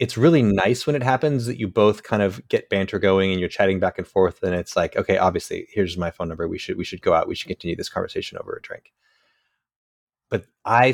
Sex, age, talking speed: male, 30-49, 245 wpm